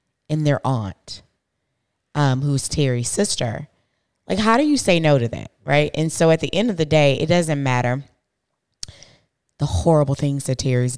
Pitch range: 120-150 Hz